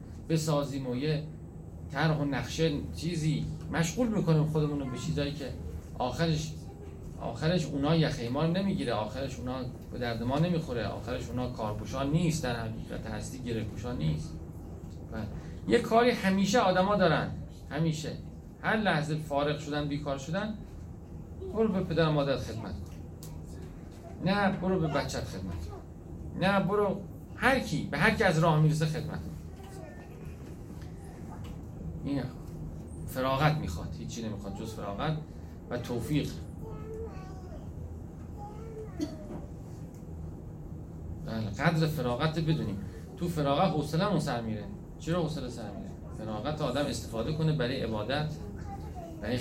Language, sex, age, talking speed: Persian, male, 40-59, 115 wpm